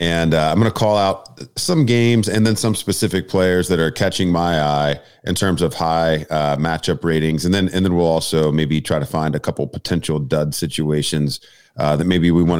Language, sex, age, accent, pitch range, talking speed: English, male, 40-59, American, 80-95 Hz, 220 wpm